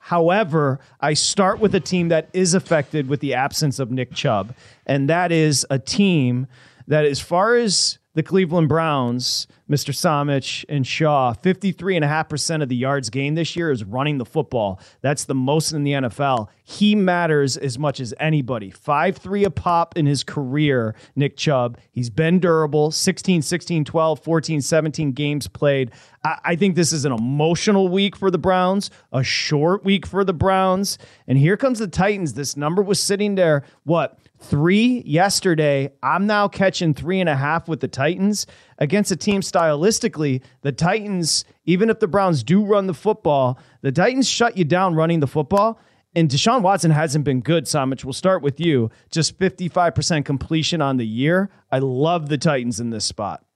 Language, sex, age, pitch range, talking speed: English, male, 30-49, 140-185 Hz, 180 wpm